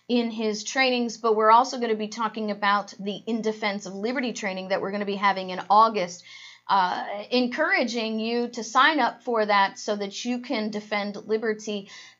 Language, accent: English, American